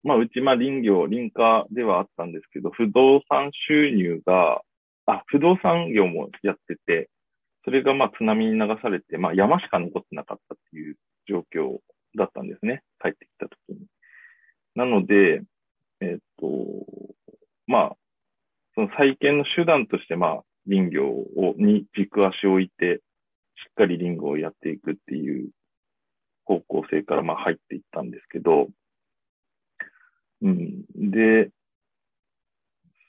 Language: Japanese